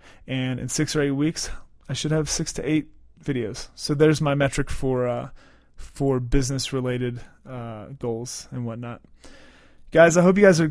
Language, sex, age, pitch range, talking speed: English, male, 30-49, 135-155 Hz, 180 wpm